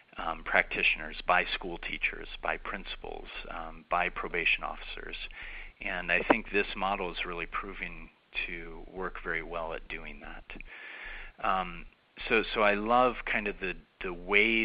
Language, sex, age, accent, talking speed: English, male, 40-59, American, 150 wpm